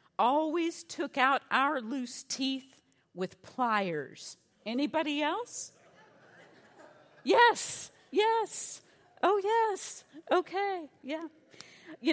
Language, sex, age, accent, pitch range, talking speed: English, female, 50-69, American, 220-285 Hz, 85 wpm